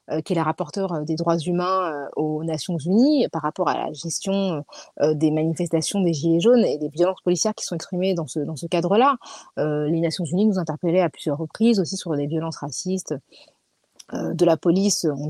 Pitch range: 165-220 Hz